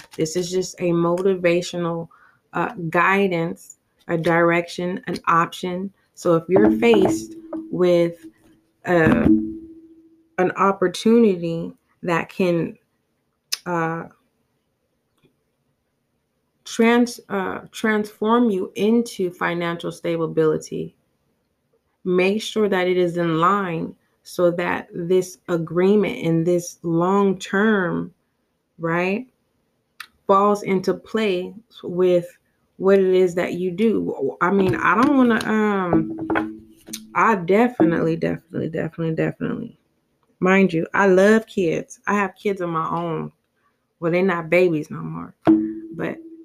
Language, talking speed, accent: English, 105 wpm, American